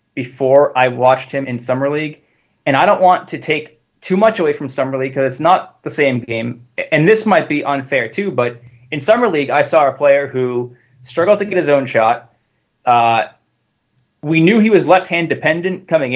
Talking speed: 200 wpm